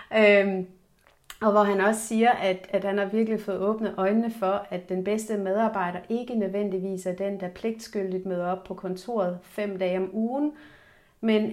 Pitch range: 190-220 Hz